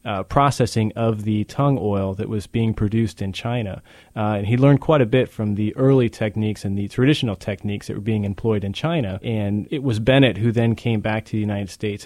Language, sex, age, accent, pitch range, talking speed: English, male, 30-49, American, 100-115 Hz, 225 wpm